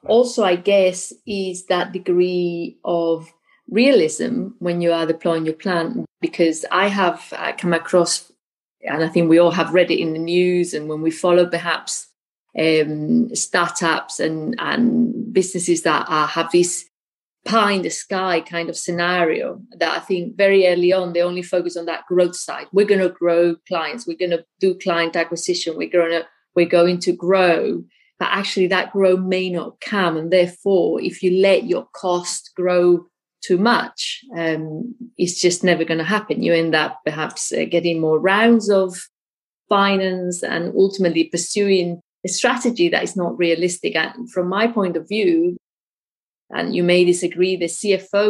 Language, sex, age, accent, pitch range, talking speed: English, female, 30-49, British, 170-195 Hz, 170 wpm